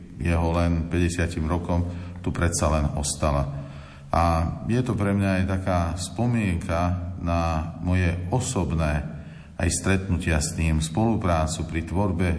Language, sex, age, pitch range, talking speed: Slovak, male, 40-59, 80-90 Hz, 125 wpm